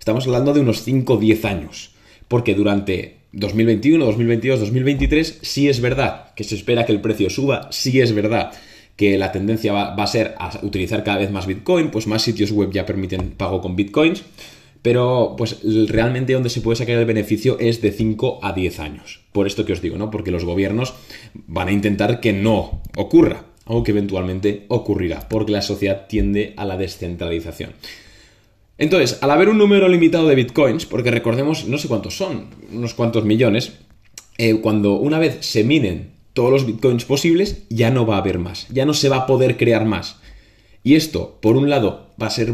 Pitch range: 100-125 Hz